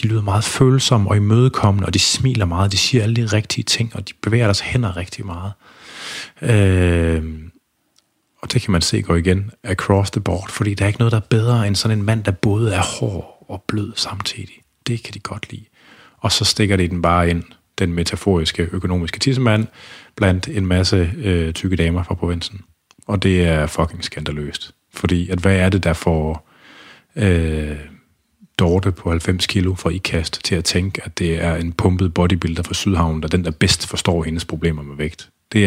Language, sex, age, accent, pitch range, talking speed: Danish, male, 30-49, native, 85-110 Hz, 200 wpm